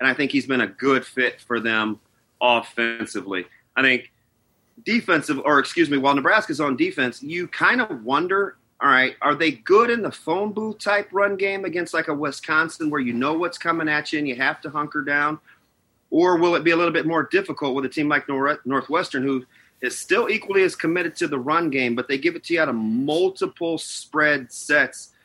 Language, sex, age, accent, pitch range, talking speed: English, male, 40-59, American, 130-170 Hz, 215 wpm